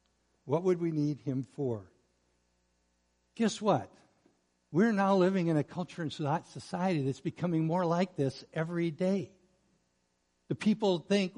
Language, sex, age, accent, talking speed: English, male, 60-79, American, 135 wpm